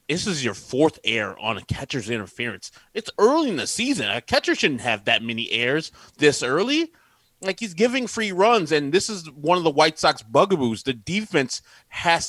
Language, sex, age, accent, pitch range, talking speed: English, male, 20-39, American, 120-175 Hz, 195 wpm